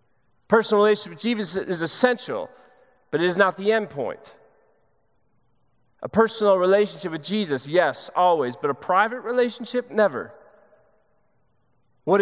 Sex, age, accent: male, 30-49, American